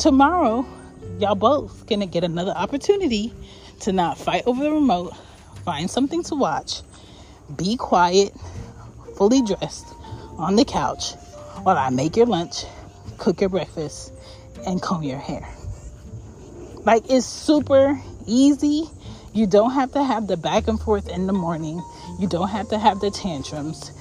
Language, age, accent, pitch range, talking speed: English, 30-49, American, 150-240 Hz, 145 wpm